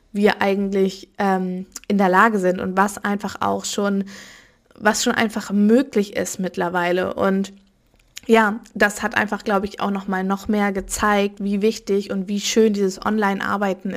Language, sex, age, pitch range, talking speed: German, female, 20-39, 195-220 Hz, 165 wpm